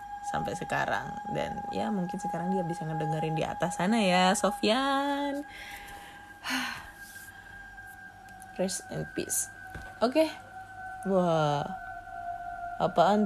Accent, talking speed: native, 95 wpm